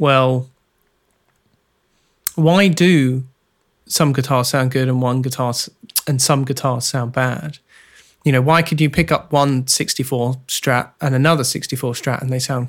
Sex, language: male, English